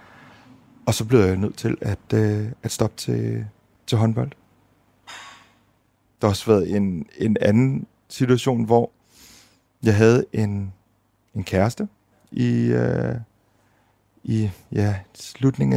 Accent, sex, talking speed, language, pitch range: native, male, 110 wpm, Danish, 95-120 Hz